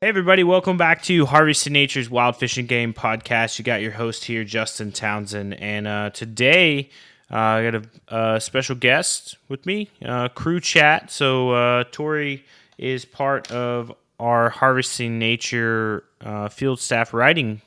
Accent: American